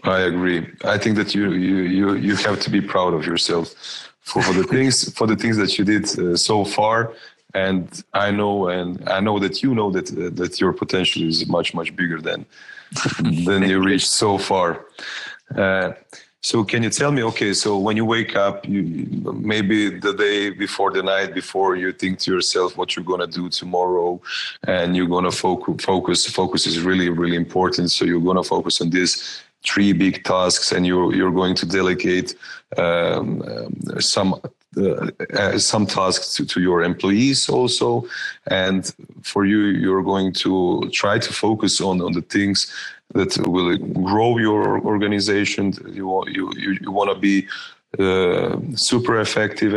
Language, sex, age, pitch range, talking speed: Croatian, male, 30-49, 90-105 Hz, 180 wpm